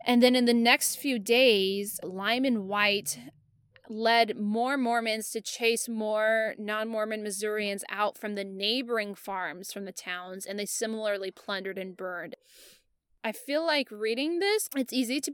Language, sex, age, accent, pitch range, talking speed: English, female, 20-39, American, 210-240 Hz, 155 wpm